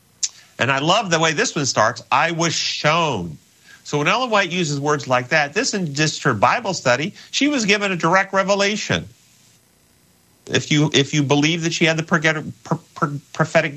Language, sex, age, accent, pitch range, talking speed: English, male, 40-59, American, 135-185 Hz, 180 wpm